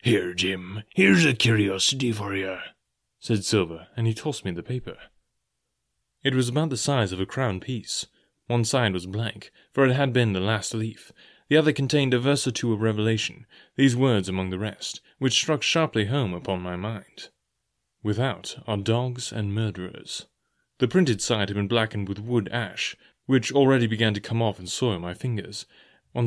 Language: English